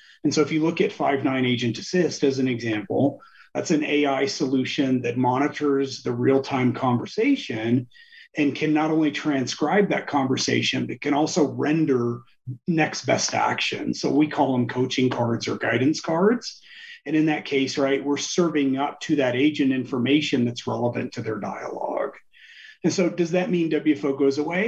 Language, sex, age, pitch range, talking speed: English, male, 30-49, 125-155 Hz, 170 wpm